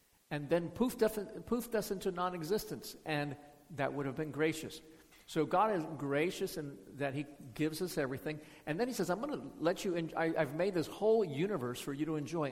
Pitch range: 140-175 Hz